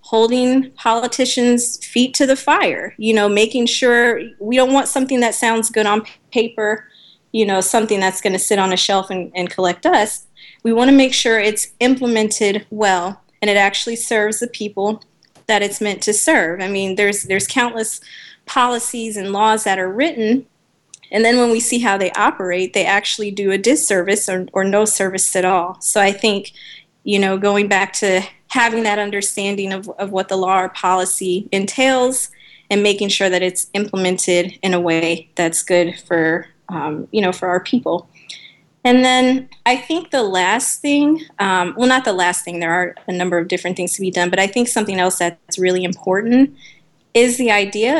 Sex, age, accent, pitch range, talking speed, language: female, 30-49, American, 185-230 Hz, 190 wpm, English